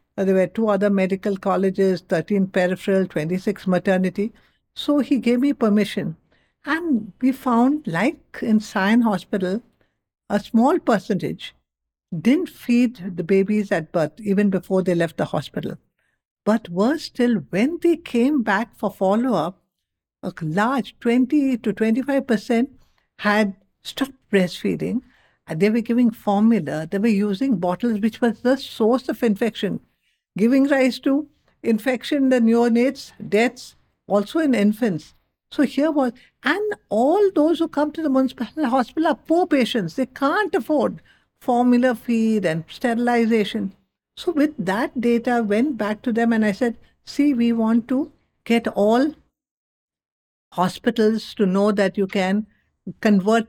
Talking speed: 145 wpm